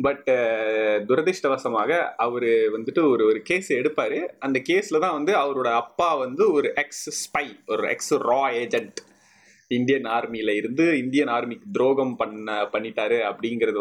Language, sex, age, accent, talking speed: Tamil, male, 30-49, native, 135 wpm